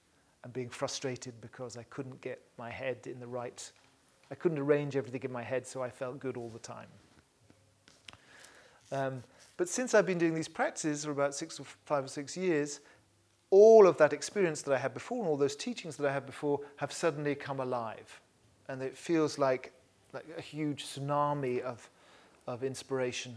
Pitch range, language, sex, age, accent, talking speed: 125-150 Hz, English, male, 40-59, British, 185 wpm